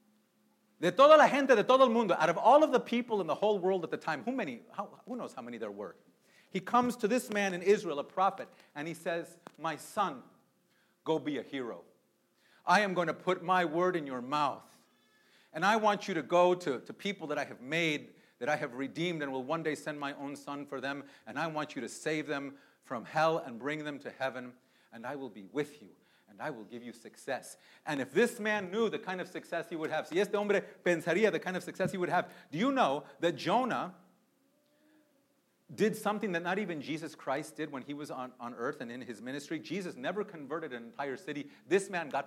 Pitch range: 150-210 Hz